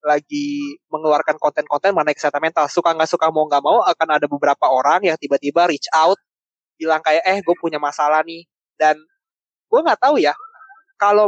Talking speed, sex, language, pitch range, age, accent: 170 wpm, male, Indonesian, 145-180 Hz, 20-39, native